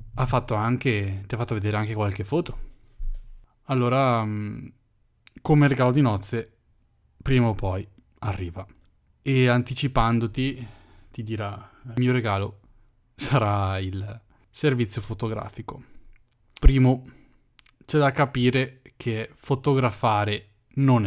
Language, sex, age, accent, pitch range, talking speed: Italian, male, 10-29, native, 105-125 Hz, 105 wpm